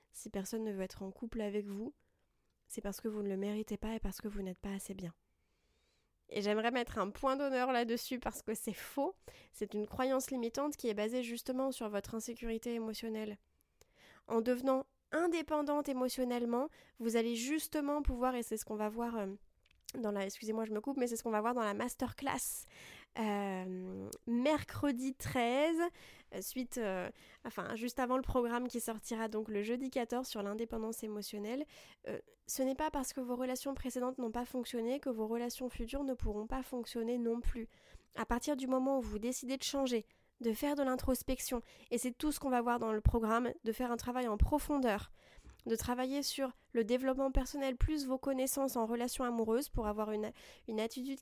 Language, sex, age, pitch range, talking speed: French, female, 20-39, 225-265 Hz, 195 wpm